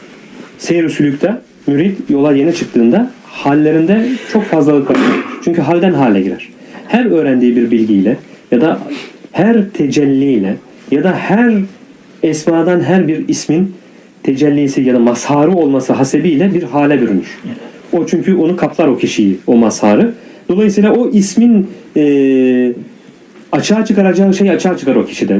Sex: male